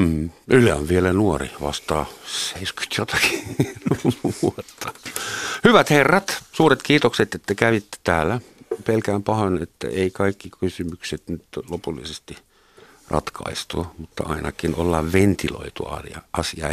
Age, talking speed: 60-79, 105 wpm